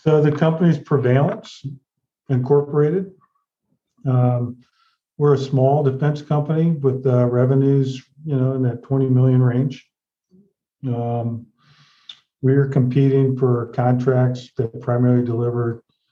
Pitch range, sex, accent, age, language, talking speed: 120-135 Hz, male, American, 50-69, English, 110 wpm